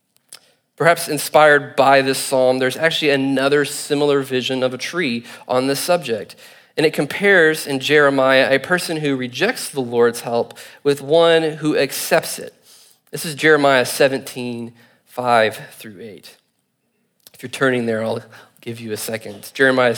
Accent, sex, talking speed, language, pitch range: American, male, 155 wpm, English, 125-160 Hz